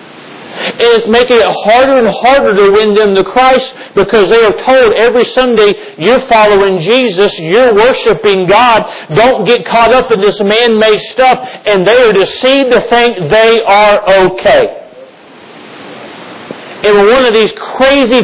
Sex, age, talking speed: male, 50-69, 150 wpm